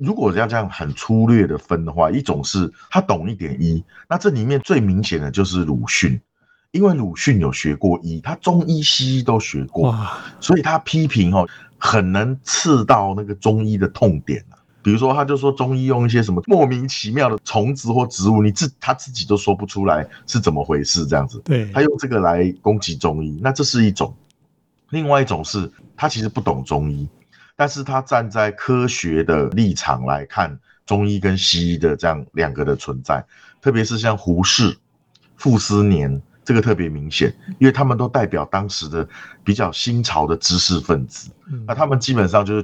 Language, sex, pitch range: Chinese, male, 90-130 Hz